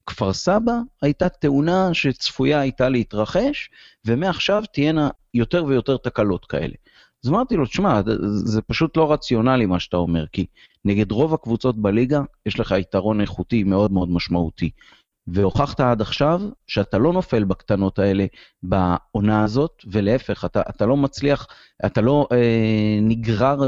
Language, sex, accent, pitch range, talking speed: Hebrew, male, native, 100-140 Hz, 140 wpm